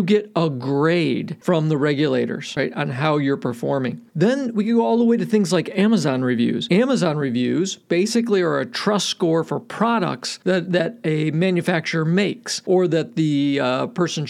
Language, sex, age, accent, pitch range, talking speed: English, male, 50-69, American, 150-200 Hz, 175 wpm